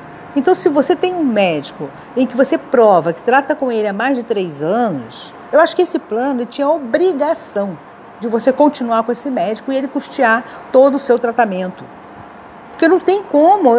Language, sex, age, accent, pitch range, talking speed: Portuguese, female, 50-69, Brazilian, 215-290 Hz, 190 wpm